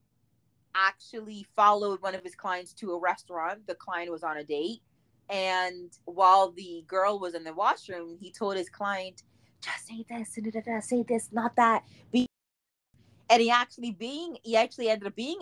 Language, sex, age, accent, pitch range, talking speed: English, female, 20-39, American, 180-225 Hz, 165 wpm